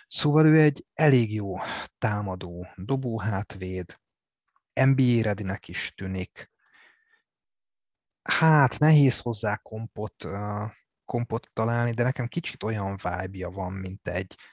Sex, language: male, Hungarian